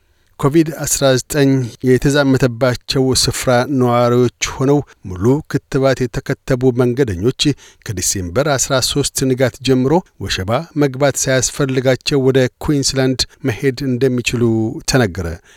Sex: male